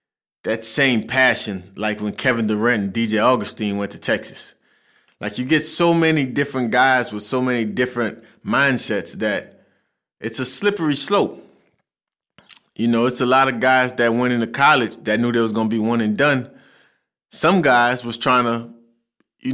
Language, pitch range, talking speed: English, 110-130 Hz, 175 wpm